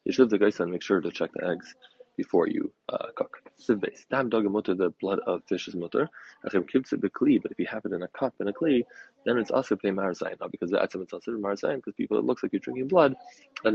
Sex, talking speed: male, 225 wpm